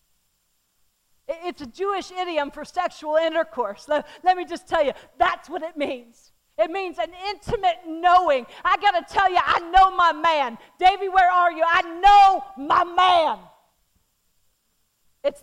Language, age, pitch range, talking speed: English, 50-69, 240-355 Hz, 155 wpm